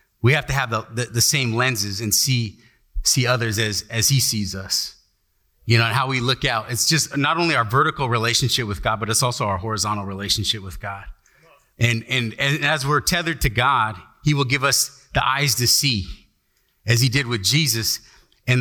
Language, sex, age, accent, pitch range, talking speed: English, male, 30-49, American, 115-140 Hz, 205 wpm